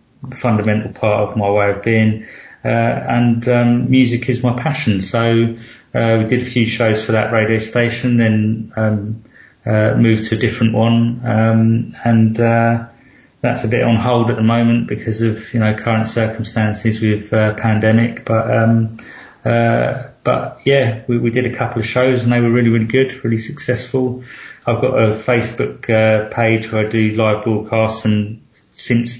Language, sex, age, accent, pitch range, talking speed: English, male, 30-49, British, 105-115 Hz, 175 wpm